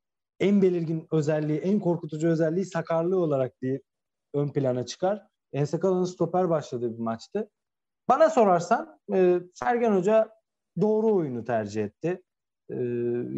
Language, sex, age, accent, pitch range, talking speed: Turkish, male, 40-59, native, 140-185 Hz, 125 wpm